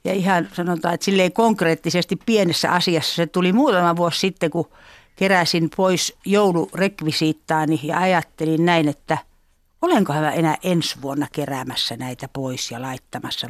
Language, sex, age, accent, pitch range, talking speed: Finnish, female, 60-79, native, 150-185 Hz, 140 wpm